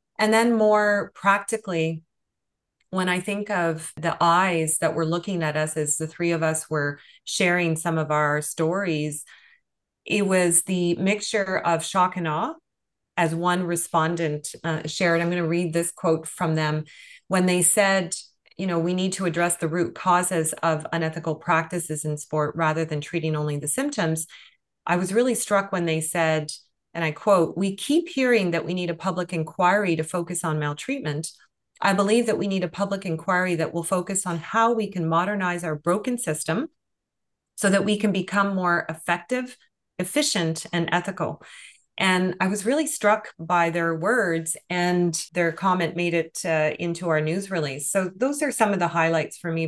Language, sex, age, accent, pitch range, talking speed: English, female, 30-49, American, 160-200 Hz, 180 wpm